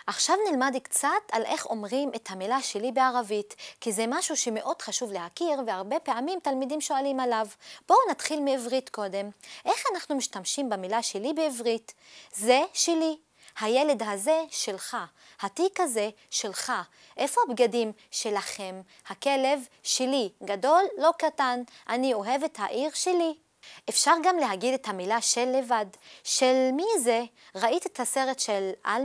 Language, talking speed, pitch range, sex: Hebrew, 135 wpm, 220-305 Hz, female